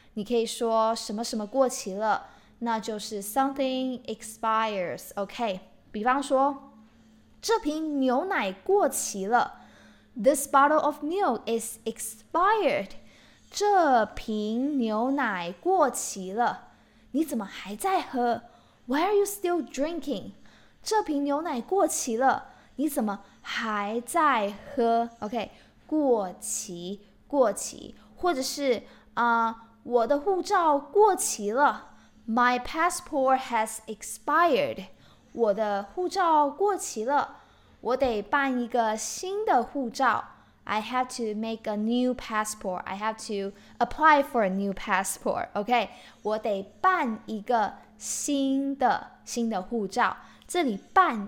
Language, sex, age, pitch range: Chinese, female, 10-29, 220-290 Hz